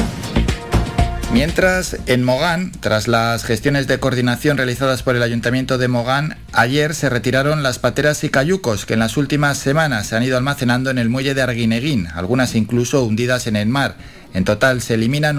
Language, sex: Spanish, male